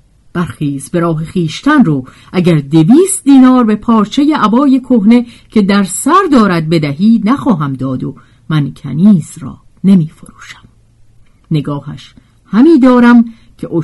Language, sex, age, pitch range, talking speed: Persian, female, 50-69, 145-230 Hz, 120 wpm